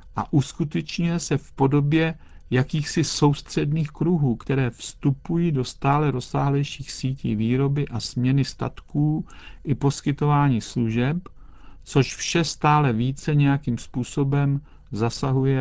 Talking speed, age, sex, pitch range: 110 wpm, 50-69, male, 120-150 Hz